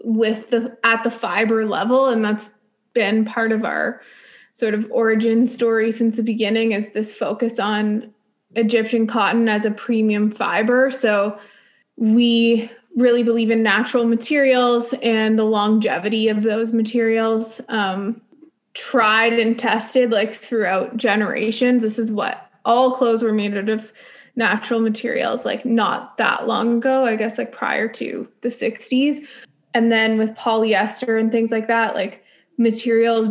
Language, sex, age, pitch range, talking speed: English, female, 20-39, 220-240 Hz, 150 wpm